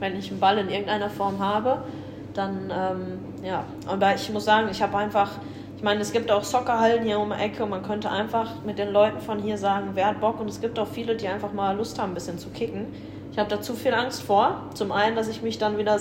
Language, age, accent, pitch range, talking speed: German, 10-29, German, 200-230 Hz, 260 wpm